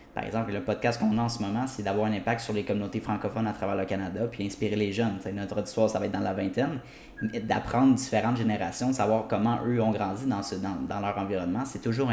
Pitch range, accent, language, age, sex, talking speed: 105-120 Hz, Canadian, French, 20-39, male, 250 wpm